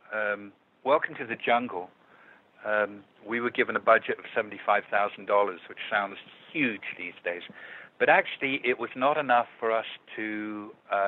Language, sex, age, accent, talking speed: English, male, 60-79, British, 150 wpm